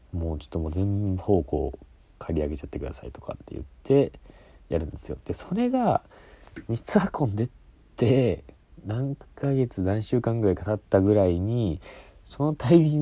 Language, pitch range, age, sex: Japanese, 80-125 Hz, 40-59, male